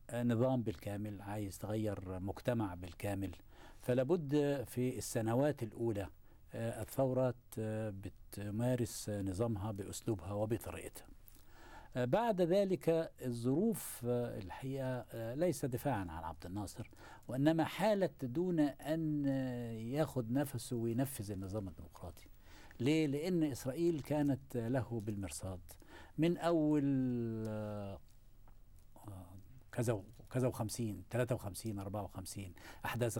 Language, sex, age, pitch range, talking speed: Arabic, male, 60-79, 100-125 Hz, 90 wpm